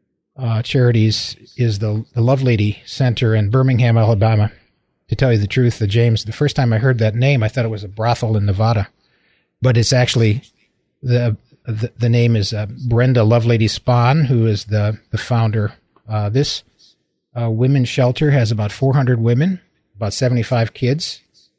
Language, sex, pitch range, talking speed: English, male, 110-125 Hz, 170 wpm